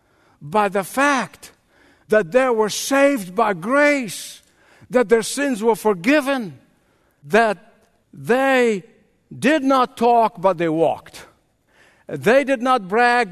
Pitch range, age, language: 170-255 Hz, 60-79, English